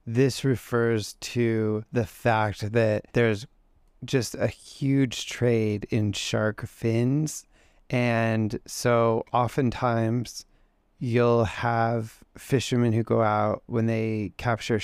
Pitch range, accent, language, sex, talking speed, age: 105-120 Hz, American, English, male, 105 wpm, 20-39